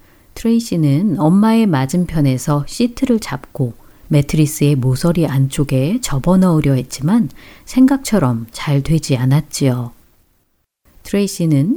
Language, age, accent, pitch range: Korean, 40-59, native, 135-215 Hz